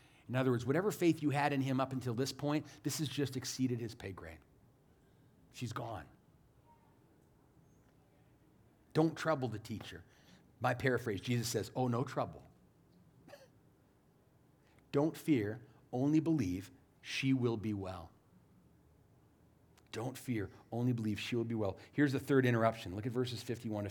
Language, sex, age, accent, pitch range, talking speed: English, male, 40-59, American, 115-140 Hz, 145 wpm